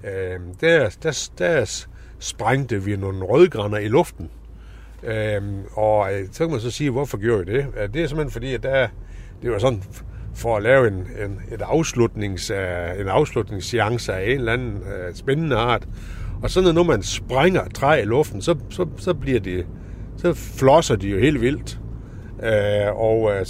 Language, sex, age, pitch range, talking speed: Danish, male, 60-79, 95-120 Hz, 180 wpm